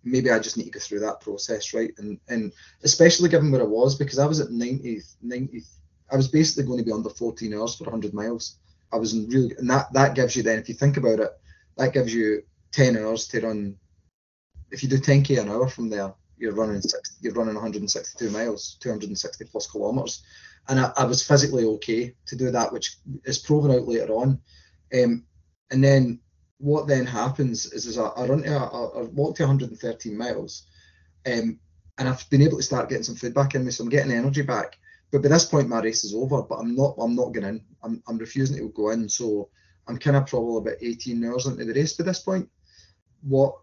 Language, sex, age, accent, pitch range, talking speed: English, male, 20-39, British, 110-135 Hz, 215 wpm